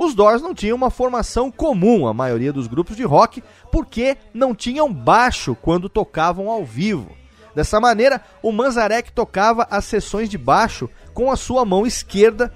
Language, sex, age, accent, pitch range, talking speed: Portuguese, male, 30-49, Brazilian, 185-245 Hz, 165 wpm